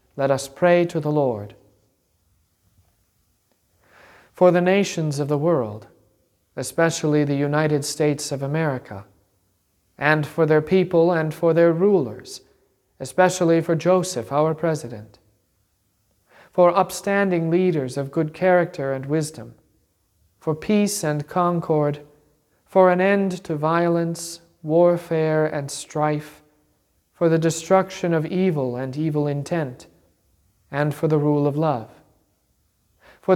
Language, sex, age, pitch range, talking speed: English, male, 40-59, 130-170 Hz, 120 wpm